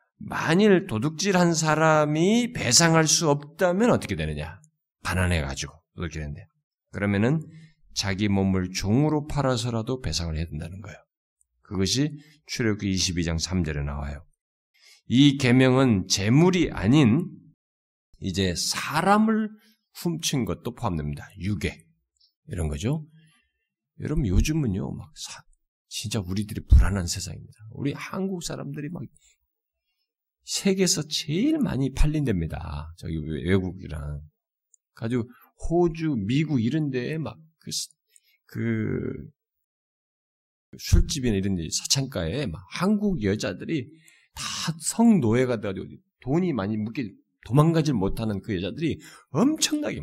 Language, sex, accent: Korean, male, native